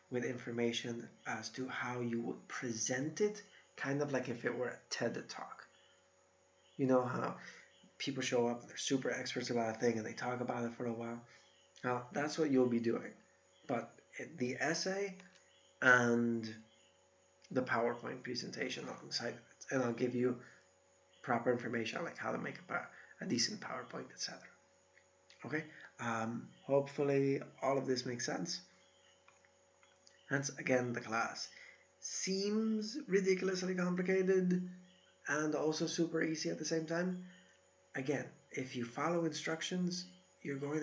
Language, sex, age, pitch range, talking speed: English, male, 30-49, 115-155 Hz, 150 wpm